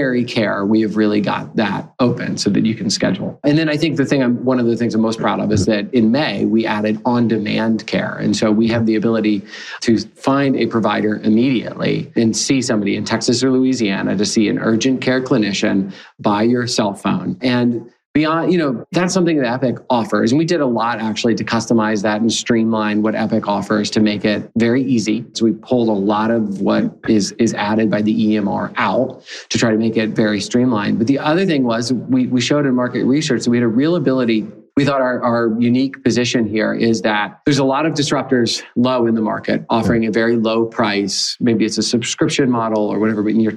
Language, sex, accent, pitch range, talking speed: English, male, American, 110-130 Hz, 225 wpm